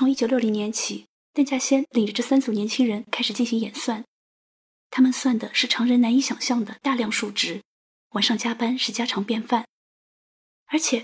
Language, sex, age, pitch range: Chinese, female, 20-39, 230-270 Hz